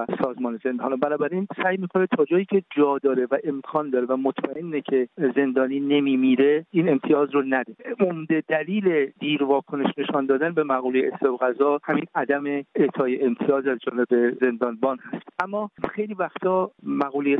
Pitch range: 130-150 Hz